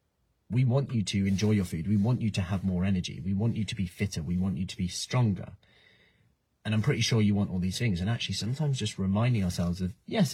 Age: 30-49